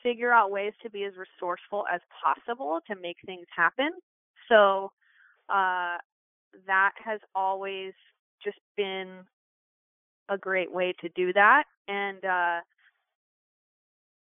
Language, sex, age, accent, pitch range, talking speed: English, female, 20-39, American, 185-235 Hz, 120 wpm